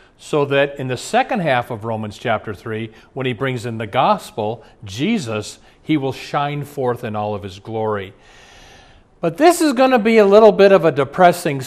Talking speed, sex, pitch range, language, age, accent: 195 wpm, male, 110-155 Hz, English, 40-59, American